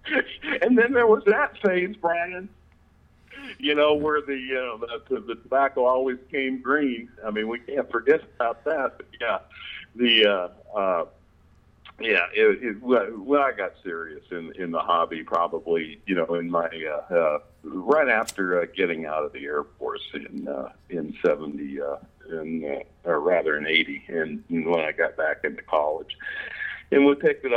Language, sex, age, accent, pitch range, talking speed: English, male, 50-69, American, 90-145 Hz, 175 wpm